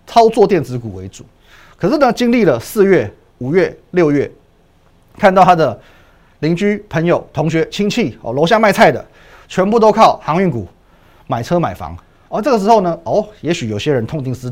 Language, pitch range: Chinese, 110-175 Hz